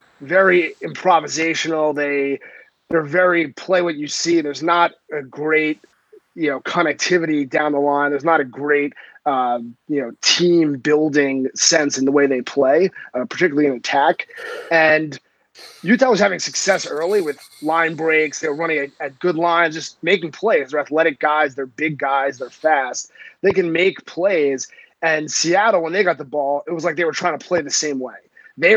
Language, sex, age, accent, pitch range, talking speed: English, male, 30-49, American, 145-170 Hz, 185 wpm